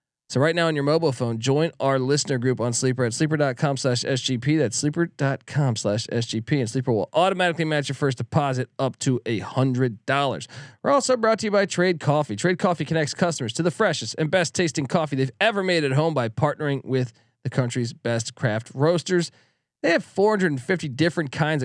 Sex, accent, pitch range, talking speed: male, American, 130-180 Hz, 195 wpm